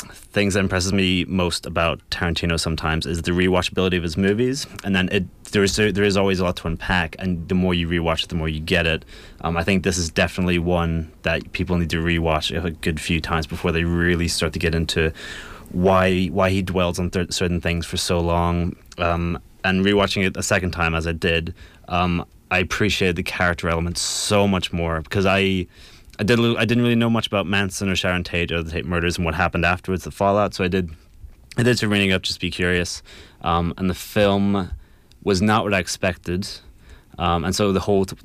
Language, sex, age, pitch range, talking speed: English, male, 20-39, 85-95 Hz, 225 wpm